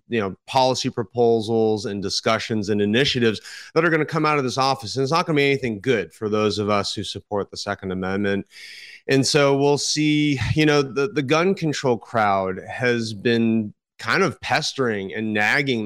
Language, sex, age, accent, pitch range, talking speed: English, male, 30-49, American, 105-130 Hz, 195 wpm